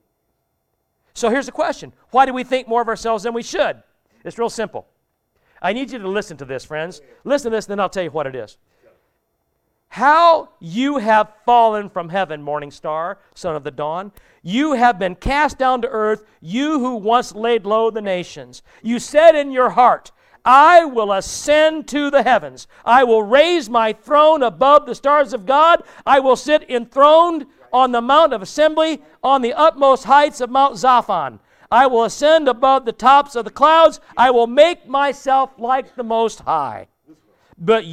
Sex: male